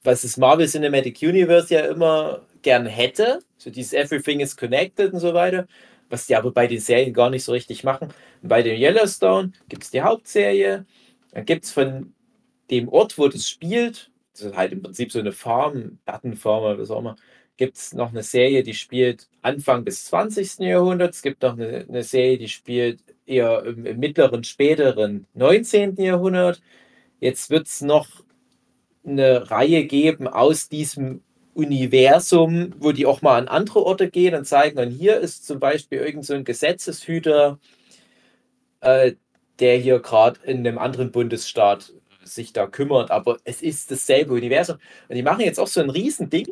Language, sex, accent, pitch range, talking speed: German, male, German, 125-180 Hz, 180 wpm